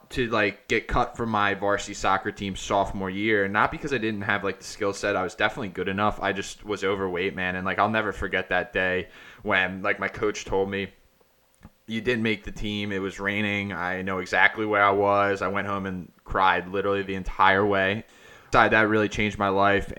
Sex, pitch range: male, 95-105 Hz